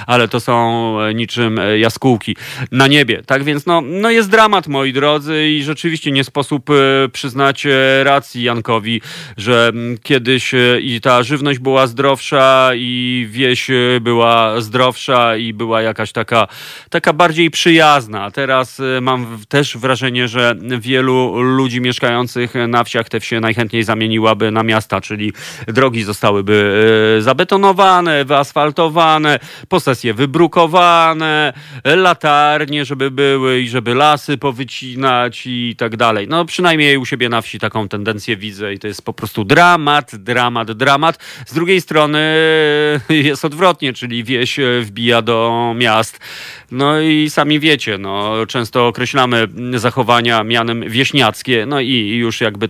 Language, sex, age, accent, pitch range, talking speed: Polish, male, 40-59, native, 115-145 Hz, 130 wpm